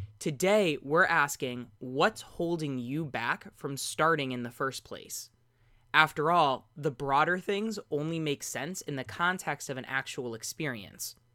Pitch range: 125-160 Hz